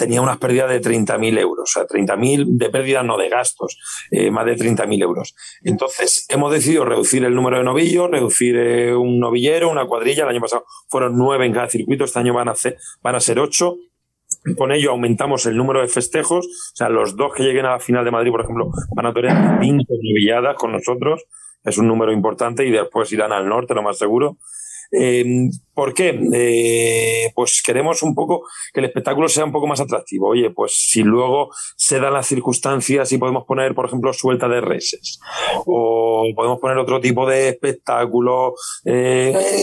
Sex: male